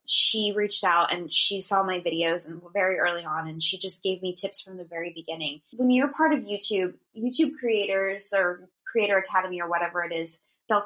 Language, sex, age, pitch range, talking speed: English, female, 20-39, 175-220 Hz, 205 wpm